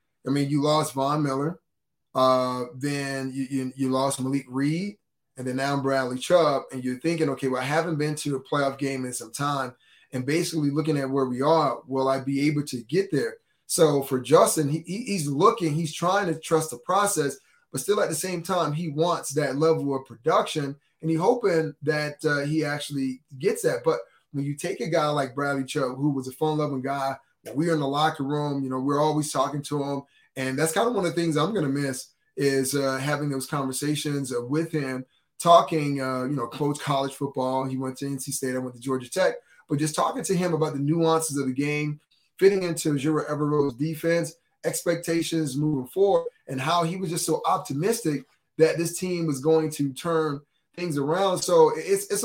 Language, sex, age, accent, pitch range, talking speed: English, male, 20-39, American, 135-165 Hz, 210 wpm